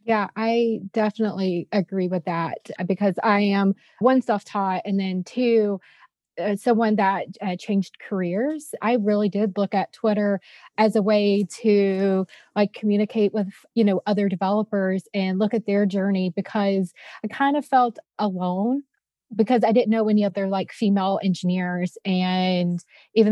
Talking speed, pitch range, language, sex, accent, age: 150 wpm, 190-220 Hz, English, female, American, 30-49